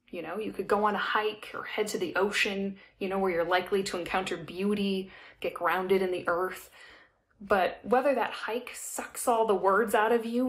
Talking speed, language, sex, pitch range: 210 wpm, English, female, 195-245 Hz